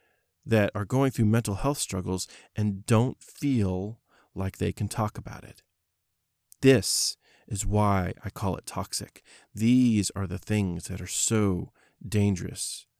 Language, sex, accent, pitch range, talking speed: English, male, American, 95-120 Hz, 145 wpm